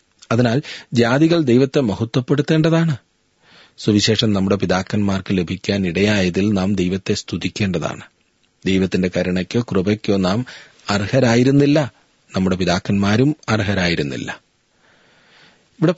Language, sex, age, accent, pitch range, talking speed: Malayalam, male, 40-59, native, 95-130 Hz, 80 wpm